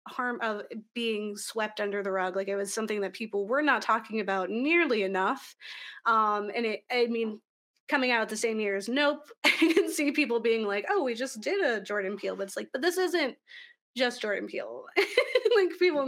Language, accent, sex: English, American, female